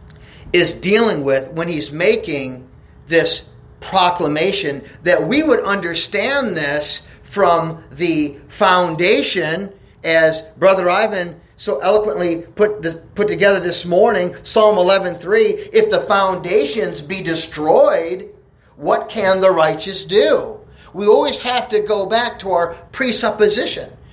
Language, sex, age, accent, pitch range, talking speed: English, male, 40-59, American, 170-225 Hz, 120 wpm